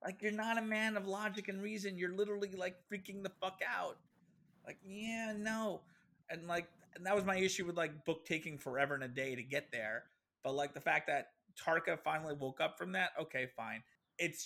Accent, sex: American, male